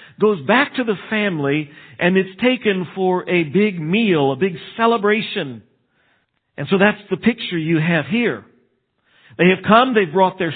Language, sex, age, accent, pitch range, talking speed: English, male, 50-69, American, 155-220 Hz, 165 wpm